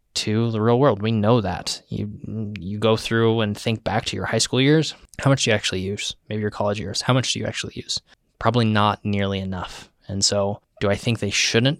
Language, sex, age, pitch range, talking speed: English, male, 20-39, 100-115 Hz, 235 wpm